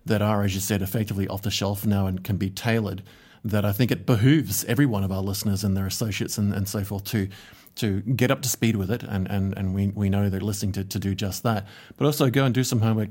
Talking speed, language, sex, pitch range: 270 wpm, English, male, 100-120 Hz